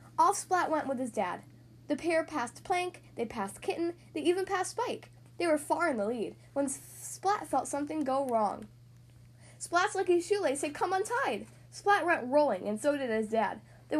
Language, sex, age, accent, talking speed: English, female, 10-29, American, 190 wpm